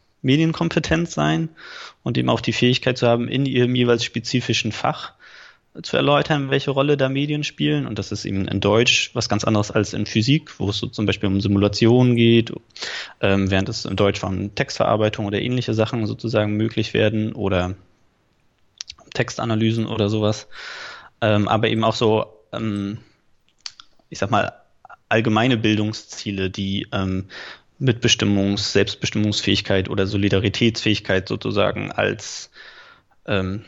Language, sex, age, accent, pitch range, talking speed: German, male, 20-39, German, 100-120 Hz, 140 wpm